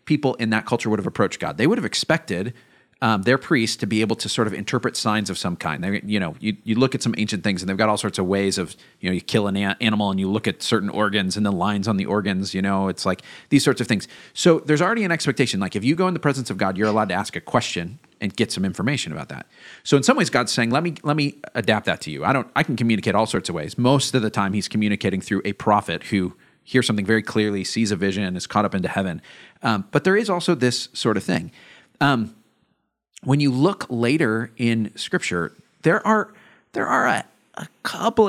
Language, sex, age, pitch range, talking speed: English, male, 30-49, 105-145 Hz, 260 wpm